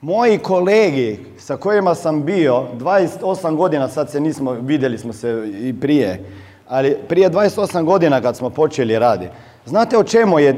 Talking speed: 160 wpm